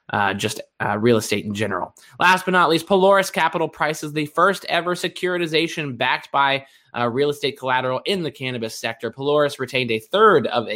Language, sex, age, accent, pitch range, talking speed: English, male, 20-39, American, 110-140 Hz, 190 wpm